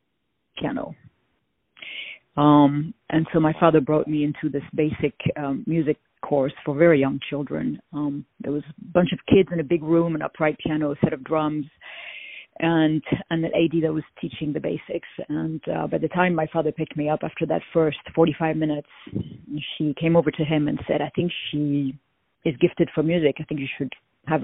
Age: 40-59